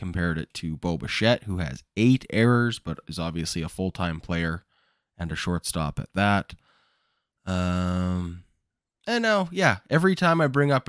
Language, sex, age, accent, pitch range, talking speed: English, male, 20-39, American, 85-110 Hz, 160 wpm